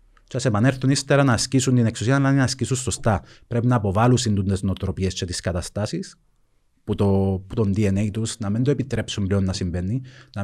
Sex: male